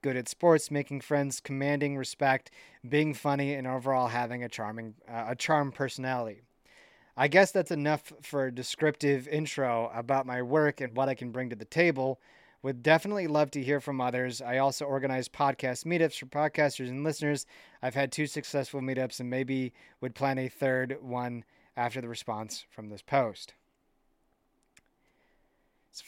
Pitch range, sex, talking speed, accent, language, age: 125-150 Hz, male, 165 wpm, American, English, 30-49